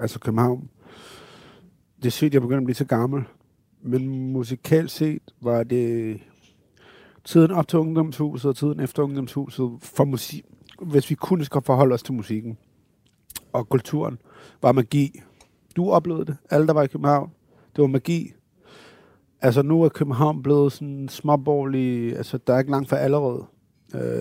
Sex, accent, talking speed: male, native, 160 wpm